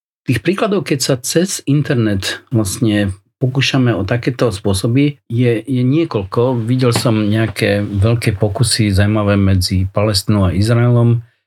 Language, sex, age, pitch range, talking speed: Slovak, male, 40-59, 100-120 Hz, 125 wpm